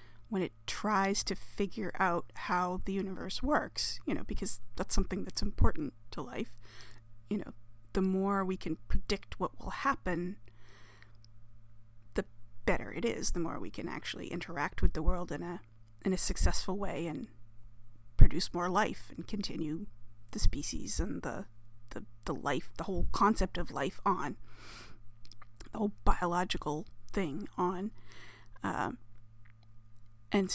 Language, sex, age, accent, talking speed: English, female, 30-49, American, 145 wpm